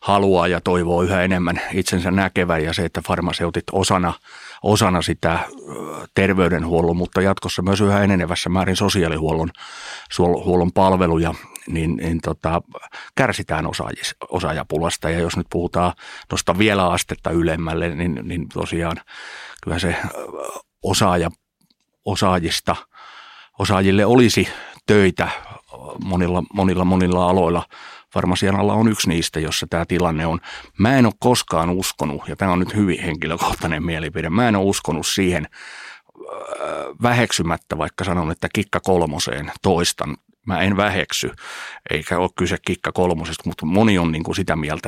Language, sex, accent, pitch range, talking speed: Finnish, male, native, 85-95 Hz, 130 wpm